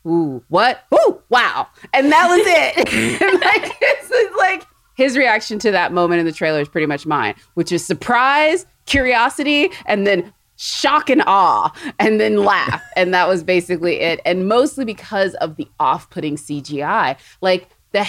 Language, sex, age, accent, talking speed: English, female, 20-39, American, 165 wpm